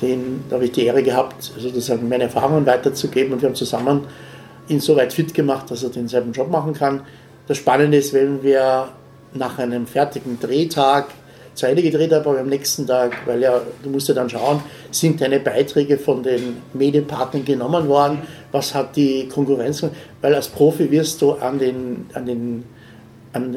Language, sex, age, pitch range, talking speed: German, male, 60-79, 130-155 Hz, 185 wpm